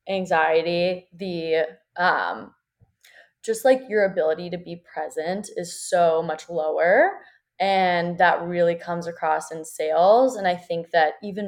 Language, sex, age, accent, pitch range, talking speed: English, female, 20-39, American, 165-200 Hz, 135 wpm